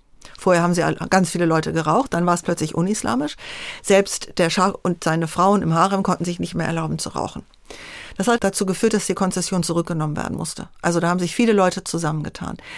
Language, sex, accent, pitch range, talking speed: German, female, German, 175-210 Hz, 205 wpm